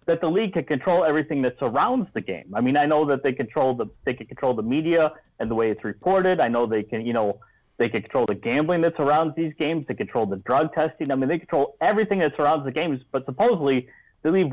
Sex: male